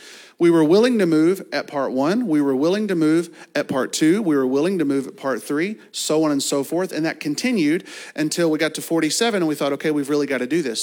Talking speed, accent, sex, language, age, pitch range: 260 wpm, American, male, English, 40-59, 135-175 Hz